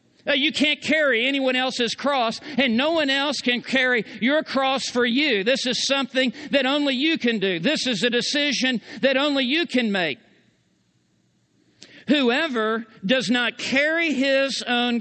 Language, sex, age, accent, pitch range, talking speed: Spanish, male, 50-69, American, 240-285 Hz, 155 wpm